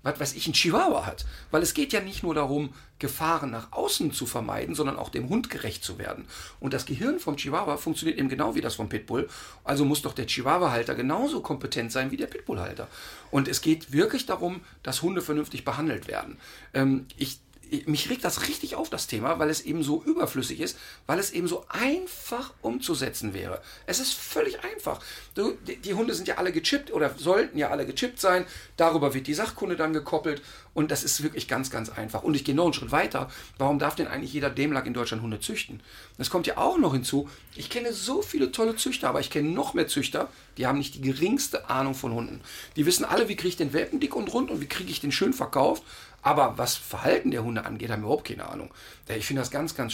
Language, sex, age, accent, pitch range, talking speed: German, male, 50-69, German, 135-180 Hz, 220 wpm